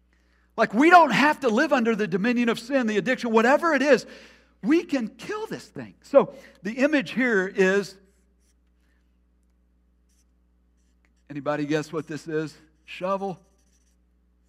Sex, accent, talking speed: male, American, 135 wpm